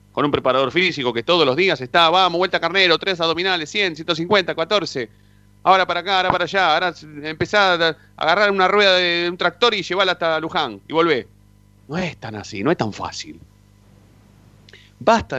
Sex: male